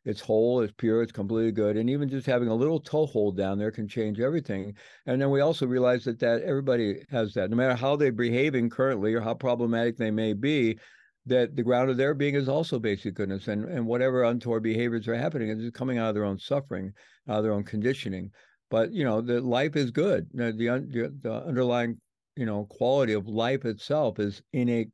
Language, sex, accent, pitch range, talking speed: English, male, American, 110-130 Hz, 210 wpm